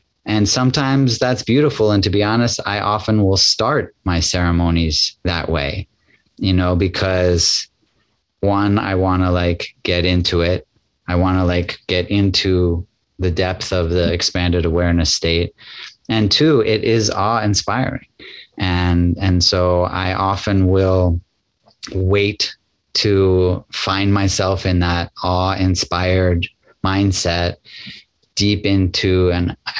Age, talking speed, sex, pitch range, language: 30-49, 125 wpm, male, 90-100 Hz, English